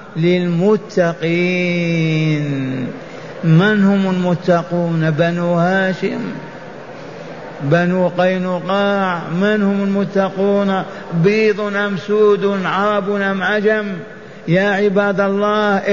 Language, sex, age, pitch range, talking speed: Arabic, male, 50-69, 180-200 Hz, 75 wpm